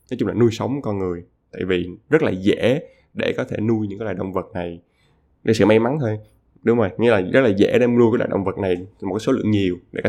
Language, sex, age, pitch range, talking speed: Vietnamese, male, 20-39, 95-115 Hz, 280 wpm